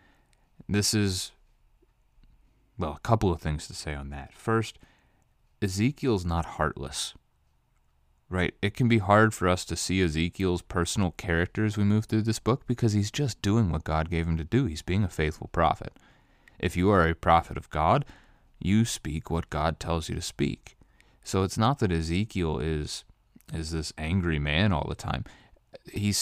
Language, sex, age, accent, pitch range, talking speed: English, male, 30-49, American, 80-105 Hz, 175 wpm